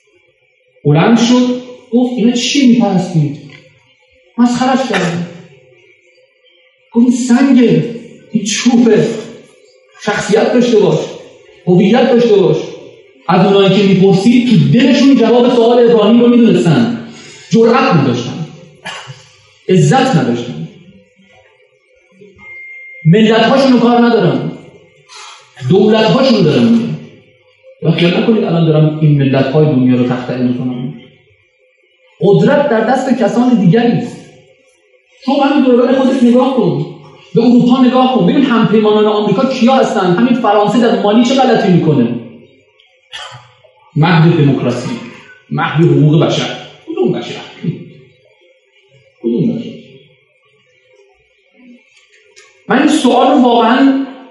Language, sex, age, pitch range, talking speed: Persian, male, 40-59, 180-265 Hz, 105 wpm